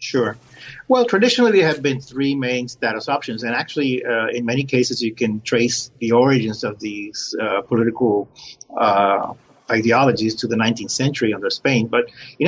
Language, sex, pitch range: English, male, 115-135 Hz